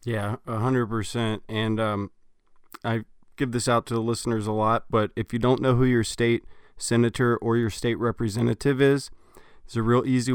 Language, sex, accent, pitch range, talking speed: English, male, American, 105-115 Hz, 175 wpm